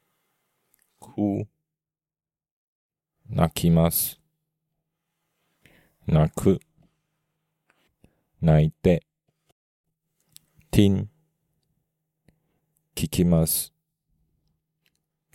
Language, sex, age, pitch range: Japanese, male, 40-59, 105-160 Hz